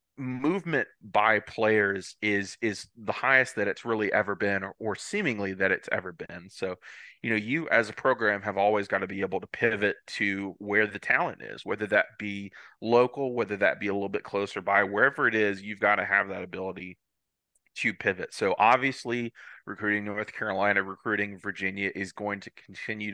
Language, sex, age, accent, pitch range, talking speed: English, male, 30-49, American, 100-110 Hz, 190 wpm